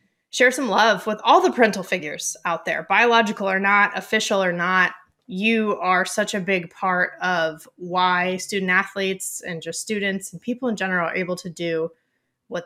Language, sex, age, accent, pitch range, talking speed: English, female, 20-39, American, 175-215 Hz, 180 wpm